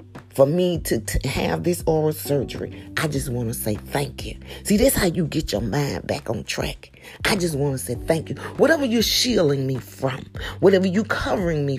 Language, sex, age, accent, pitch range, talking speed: English, female, 40-59, American, 130-215 Hz, 215 wpm